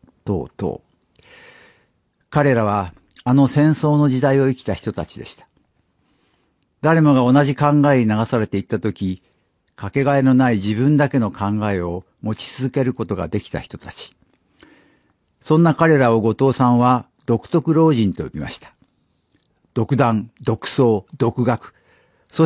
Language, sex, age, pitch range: Japanese, male, 60-79, 110-145 Hz